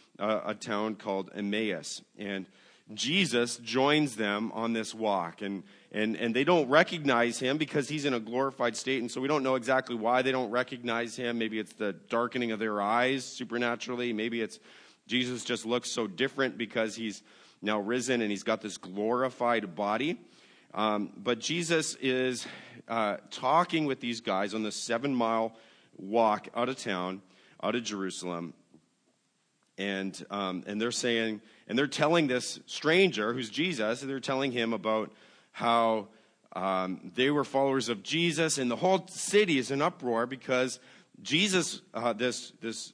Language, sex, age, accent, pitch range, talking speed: English, male, 30-49, American, 110-140 Hz, 160 wpm